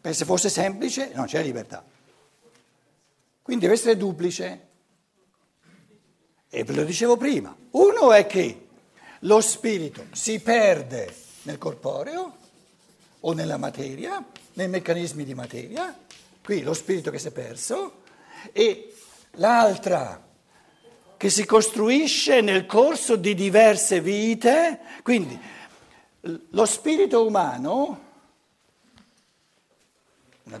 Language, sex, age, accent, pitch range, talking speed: Italian, male, 60-79, native, 185-255 Hz, 105 wpm